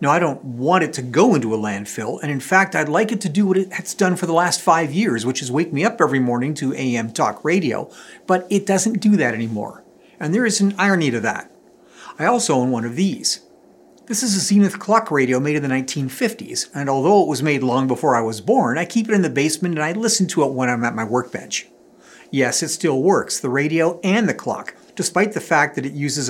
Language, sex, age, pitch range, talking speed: English, male, 50-69, 130-185 Hz, 245 wpm